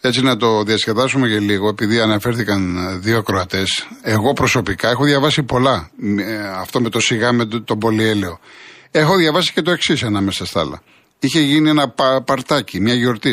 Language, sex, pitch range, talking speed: Greek, male, 110-150 Hz, 170 wpm